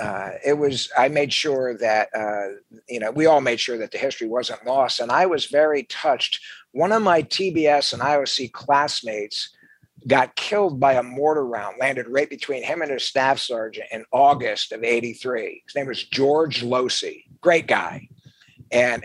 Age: 60-79